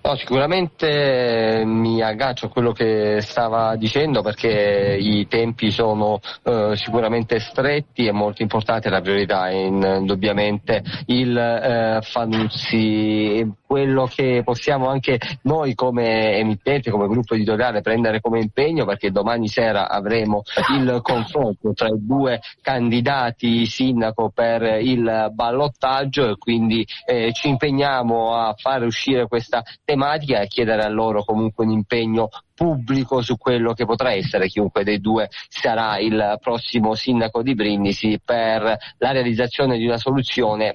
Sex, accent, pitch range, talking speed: male, native, 110-125 Hz, 135 wpm